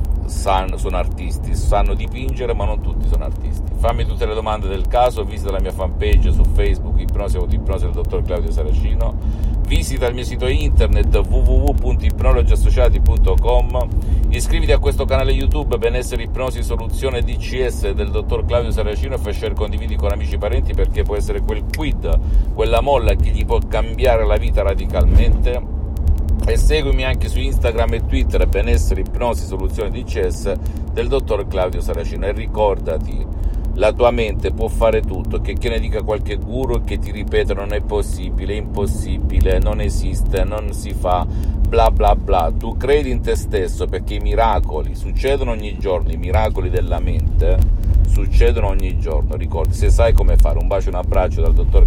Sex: male